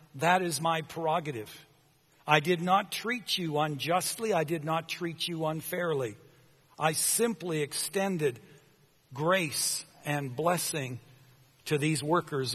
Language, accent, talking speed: English, American, 120 wpm